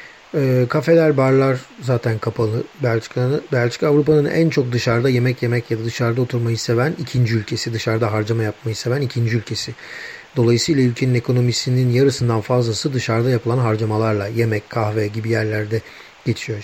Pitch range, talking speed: 115-135 Hz, 135 wpm